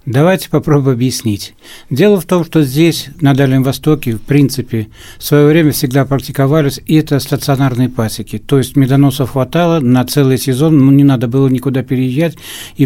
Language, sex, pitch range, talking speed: Russian, male, 125-150 Hz, 170 wpm